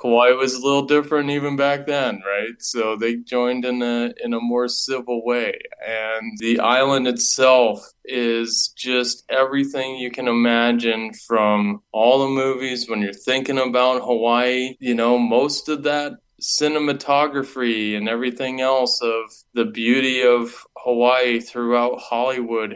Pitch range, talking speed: 115-125 Hz, 140 wpm